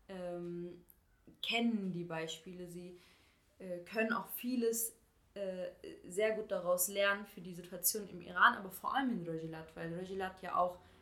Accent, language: German, German